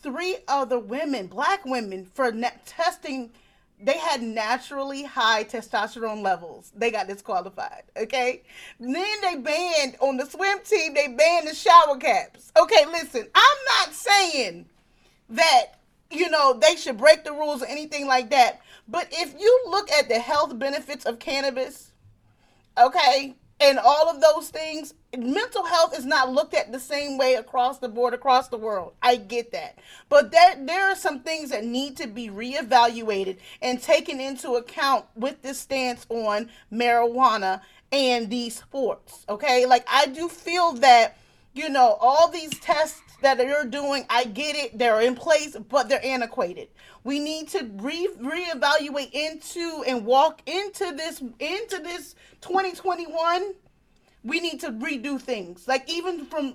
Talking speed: 155 wpm